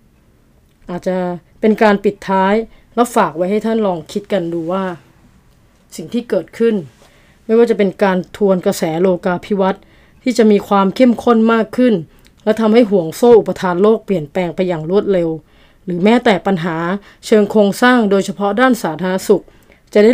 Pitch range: 185-235 Hz